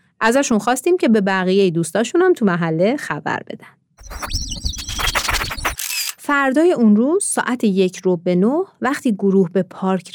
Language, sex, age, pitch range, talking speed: Persian, female, 30-49, 180-255 Hz, 125 wpm